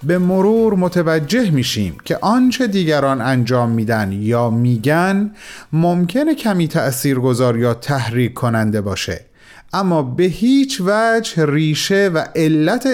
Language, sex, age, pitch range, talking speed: Persian, male, 30-49, 125-200 Hz, 115 wpm